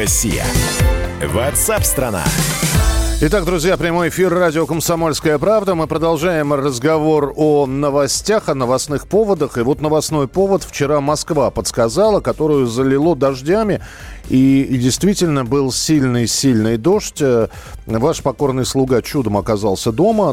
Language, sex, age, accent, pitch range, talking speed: Russian, male, 40-59, native, 115-155 Hz, 110 wpm